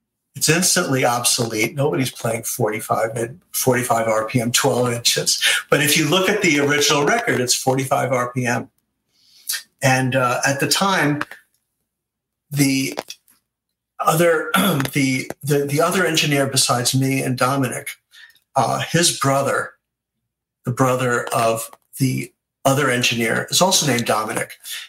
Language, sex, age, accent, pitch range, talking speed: English, male, 50-69, American, 125-150 Hz, 120 wpm